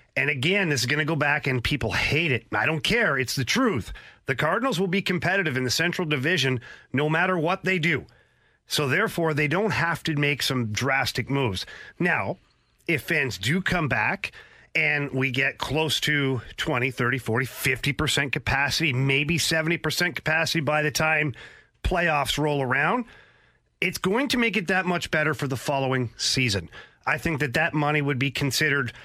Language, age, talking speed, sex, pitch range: English, 40-59, 180 wpm, male, 135-170 Hz